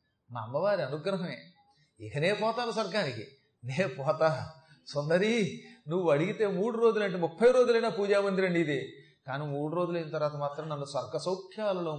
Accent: native